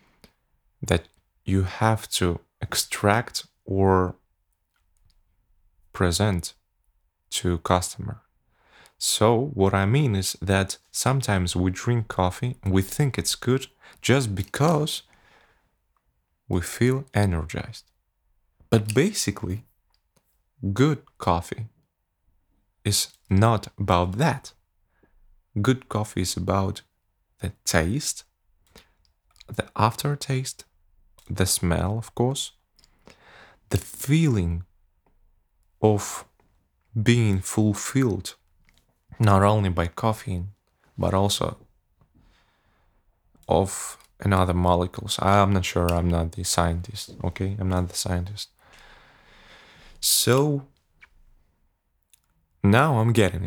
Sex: male